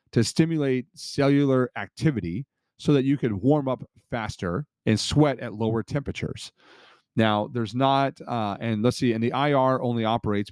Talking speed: 160 wpm